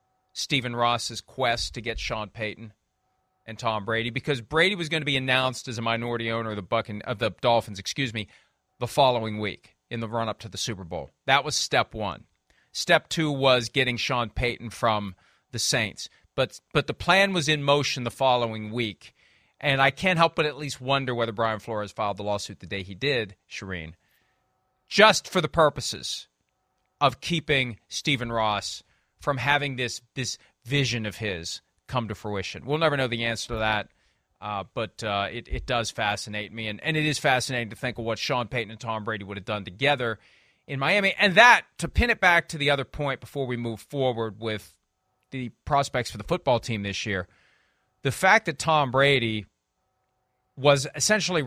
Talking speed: 190 wpm